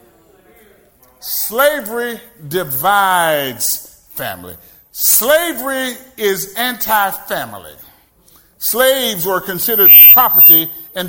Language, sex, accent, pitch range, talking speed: English, male, American, 195-280 Hz, 60 wpm